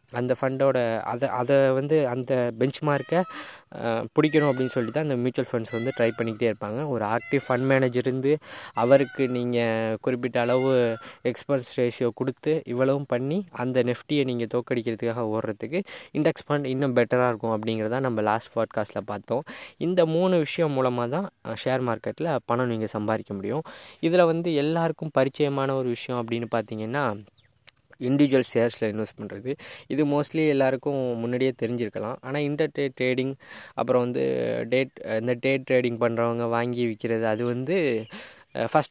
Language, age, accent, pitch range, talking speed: Tamil, 20-39, native, 115-140 Hz, 140 wpm